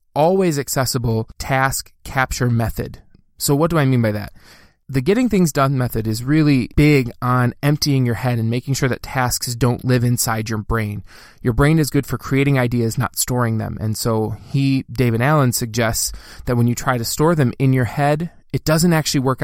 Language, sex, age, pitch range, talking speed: English, male, 20-39, 115-140 Hz, 200 wpm